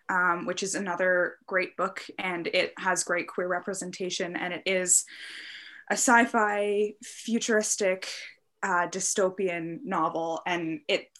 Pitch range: 170-205 Hz